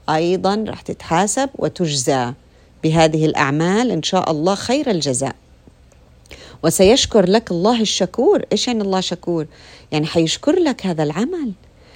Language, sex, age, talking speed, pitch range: Arabic, female, 50-69, 120 wpm, 150-220 Hz